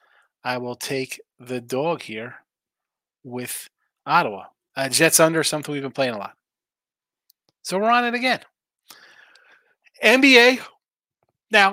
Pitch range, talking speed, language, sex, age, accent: 140-180 Hz, 120 wpm, English, male, 30-49, American